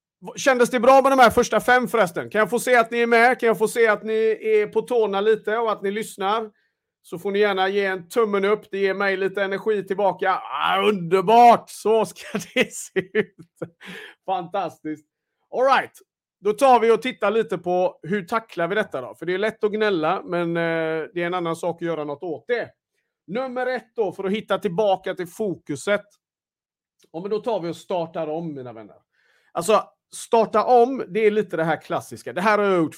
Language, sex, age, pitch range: Swedish, male, 40-59, 160-215 Hz